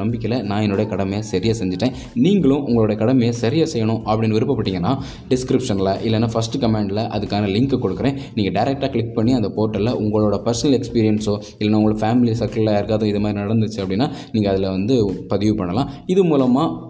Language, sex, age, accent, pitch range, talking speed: Tamil, male, 20-39, native, 105-130 Hz, 160 wpm